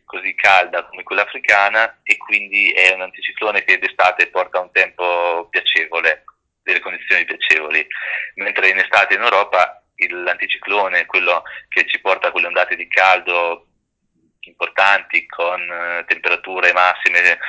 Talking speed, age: 135 wpm, 30-49